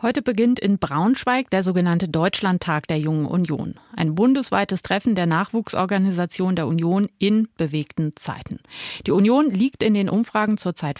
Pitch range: 165-215 Hz